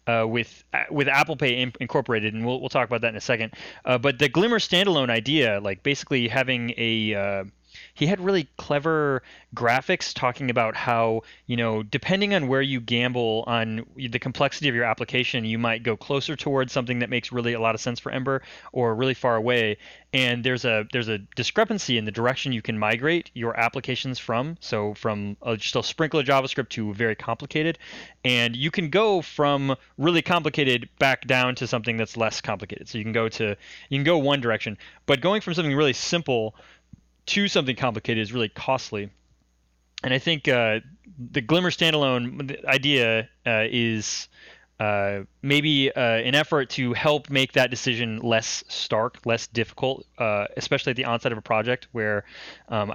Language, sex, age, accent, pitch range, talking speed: English, male, 20-39, American, 110-140 Hz, 185 wpm